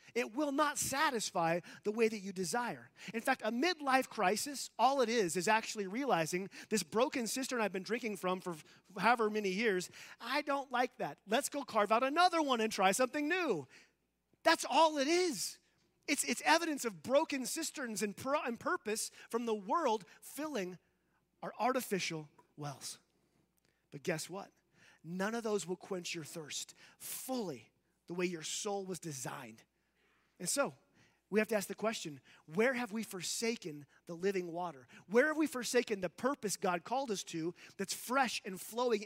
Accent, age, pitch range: American, 30-49, 175-250 Hz